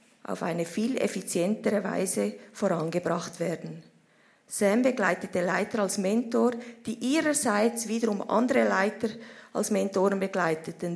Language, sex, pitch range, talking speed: German, female, 185-230 Hz, 110 wpm